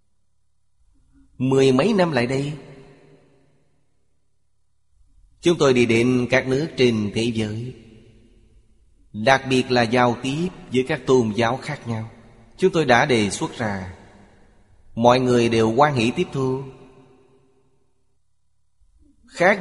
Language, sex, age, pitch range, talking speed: Vietnamese, male, 30-49, 105-130 Hz, 120 wpm